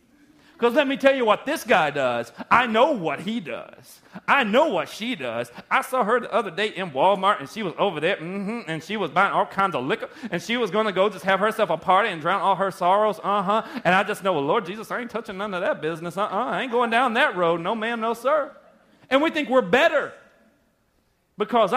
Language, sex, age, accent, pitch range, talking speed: English, male, 40-59, American, 155-230 Hz, 245 wpm